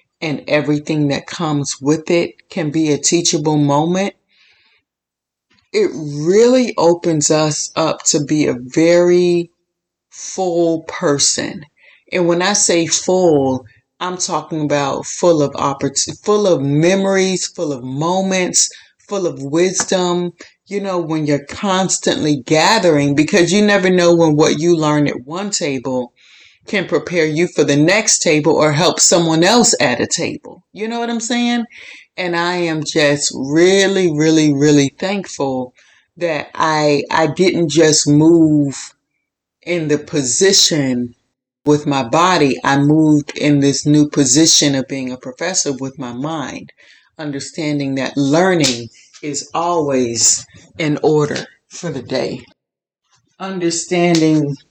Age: 30-49